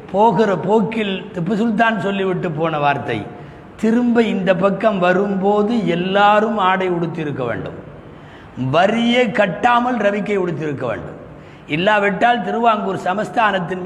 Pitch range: 175-220 Hz